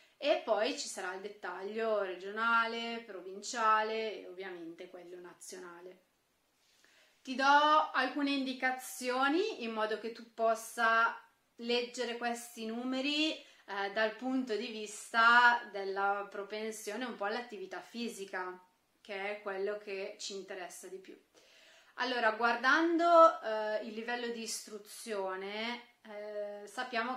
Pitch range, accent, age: 200-245 Hz, native, 30-49